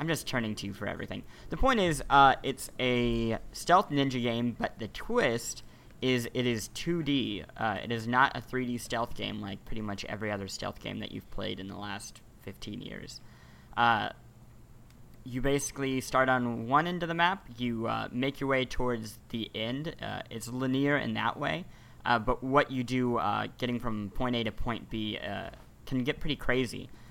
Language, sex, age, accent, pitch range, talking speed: English, male, 20-39, American, 105-125 Hz, 195 wpm